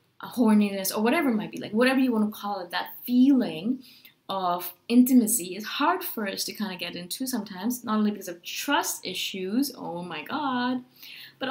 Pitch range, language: 205-255 Hz, English